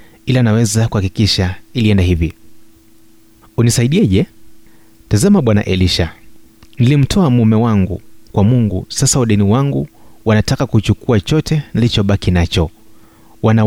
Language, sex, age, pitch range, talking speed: Swahili, male, 30-49, 95-115 Hz, 100 wpm